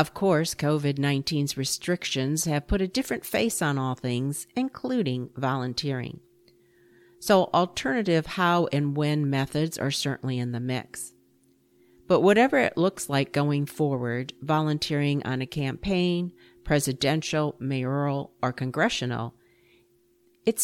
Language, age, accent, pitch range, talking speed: English, 50-69, American, 130-160 Hz, 120 wpm